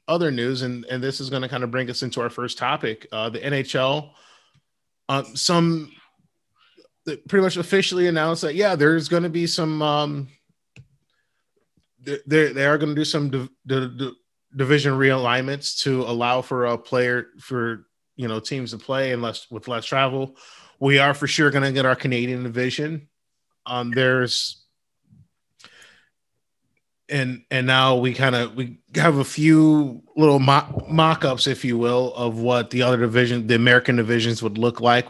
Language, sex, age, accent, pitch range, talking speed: English, male, 20-39, American, 120-150 Hz, 170 wpm